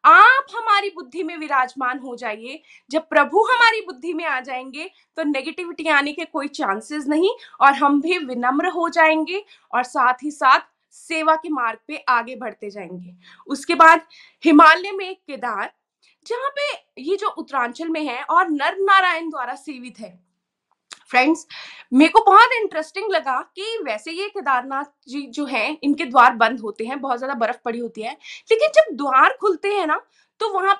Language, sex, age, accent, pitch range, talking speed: Hindi, female, 20-39, native, 255-360 Hz, 170 wpm